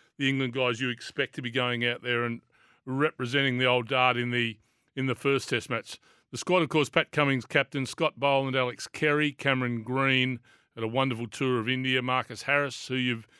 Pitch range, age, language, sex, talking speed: 125-140 Hz, 40-59, English, male, 200 wpm